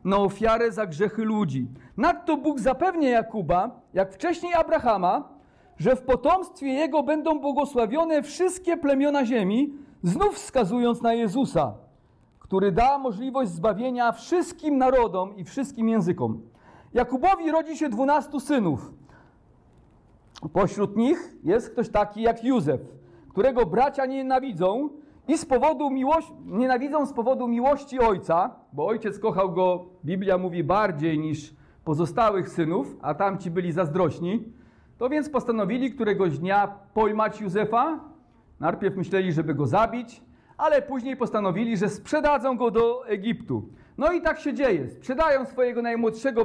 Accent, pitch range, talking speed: native, 200-285 Hz, 130 wpm